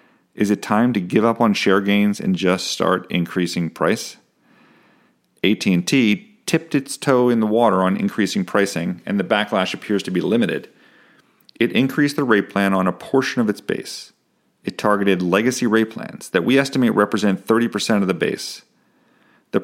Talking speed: 170 wpm